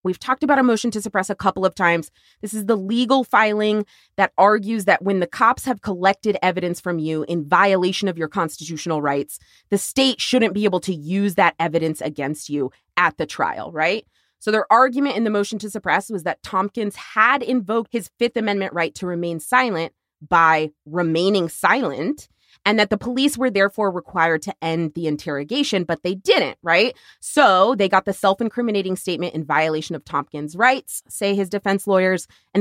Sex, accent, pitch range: female, American, 170-225 Hz